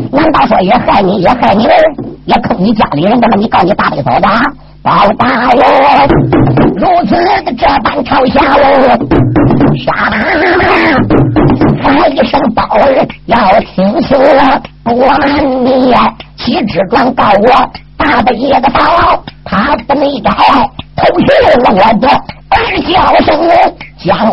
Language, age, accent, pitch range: Chinese, 50-69, American, 270-355 Hz